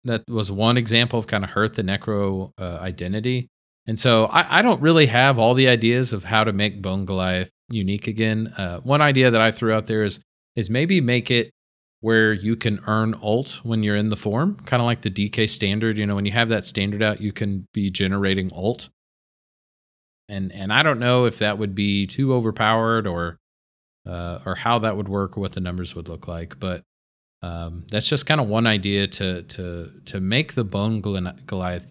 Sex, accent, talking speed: male, American, 210 wpm